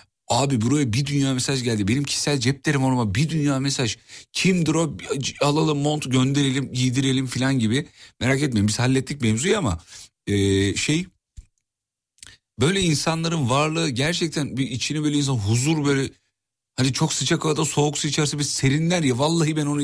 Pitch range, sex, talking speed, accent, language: 100-150 Hz, male, 155 wpm, native, Turkish